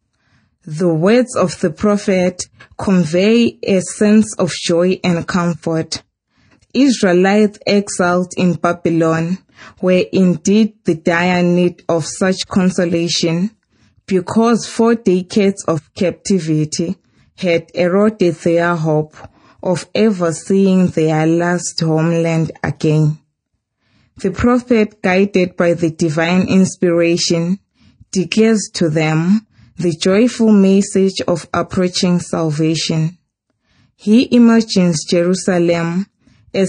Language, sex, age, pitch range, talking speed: English, female, 20-39, 165-195 Hz, 100 wpm